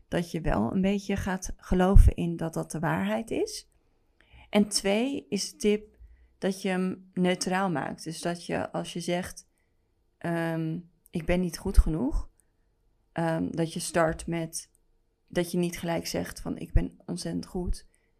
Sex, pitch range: female, 165-190 Hz